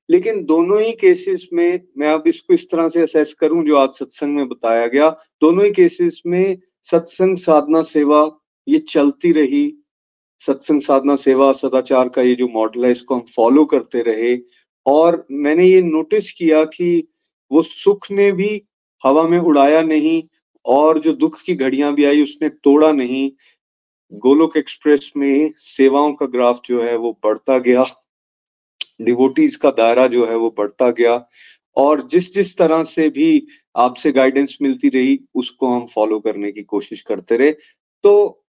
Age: 40-59